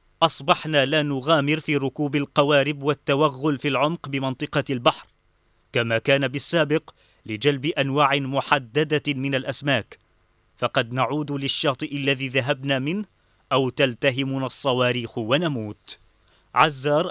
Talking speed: 105 wpm